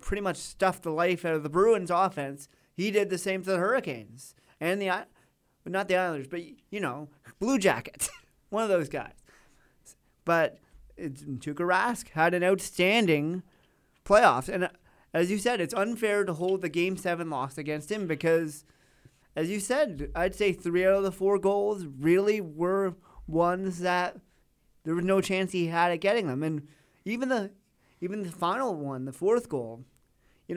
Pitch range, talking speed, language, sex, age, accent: 155-195 Hz, 175 wpm, English, male, 30-49, American